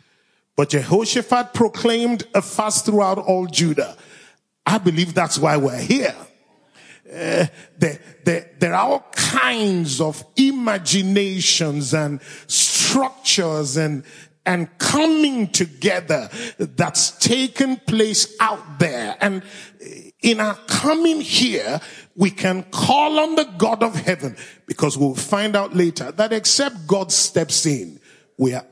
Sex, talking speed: male, 125 wpm